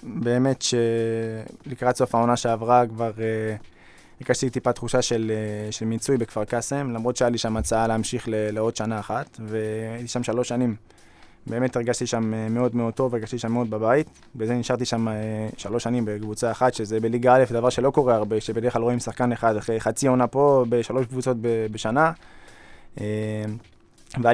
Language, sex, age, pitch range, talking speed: Hebrew, male, 20-39, 110-125 Hz, 175 wpm